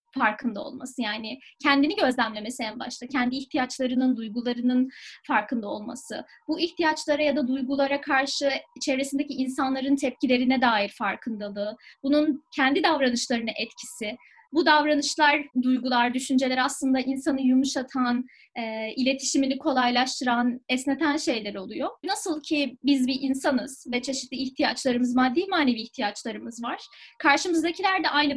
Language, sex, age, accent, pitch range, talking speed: Turkish, female, 20-39, native, 250-295 Hz, 115 wpm